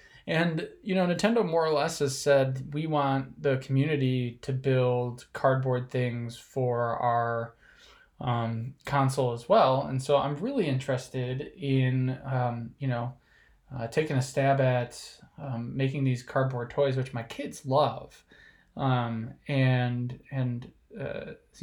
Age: 20-39